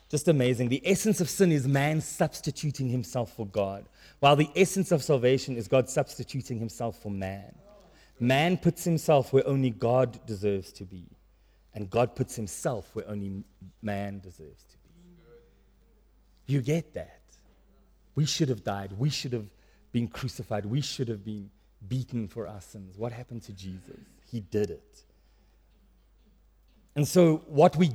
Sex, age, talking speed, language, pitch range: male, 30-49, 155 wpm, English, 115-160 Hz